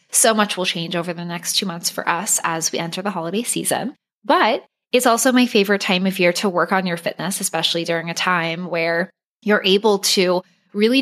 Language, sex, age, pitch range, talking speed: English, female, 20-39, 170-210 Hz, 210 wpm